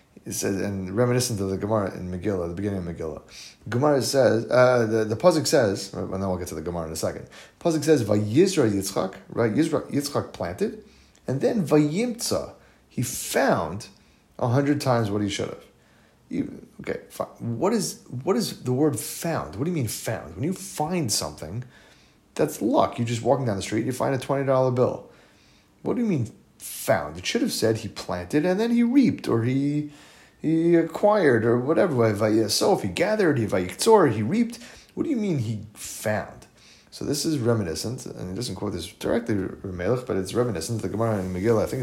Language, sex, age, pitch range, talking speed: English, male, 30-49, 100-150 Hz, 190 wpm